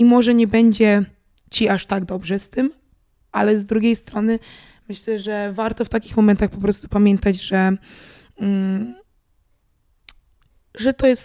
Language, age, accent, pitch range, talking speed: Polish, 20-39, native, 195-240 Hz, 150 wpm